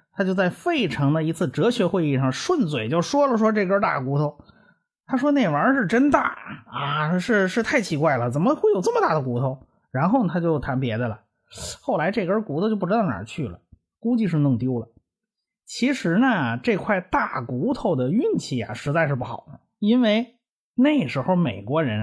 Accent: native